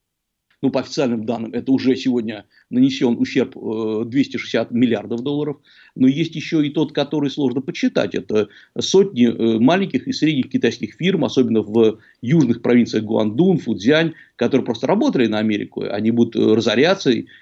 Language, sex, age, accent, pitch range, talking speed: Russian, male, 50-69, native, 115-145 Hz, 140 wpm